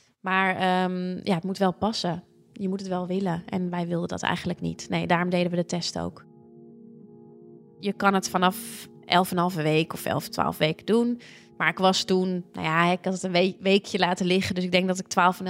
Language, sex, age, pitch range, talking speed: Dutch, female, 20-39, 175-200 Hz, 235 wpm